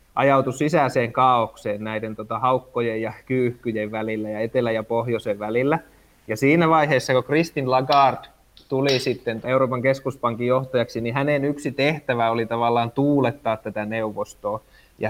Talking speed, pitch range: 140 wpm, 115-140 Hz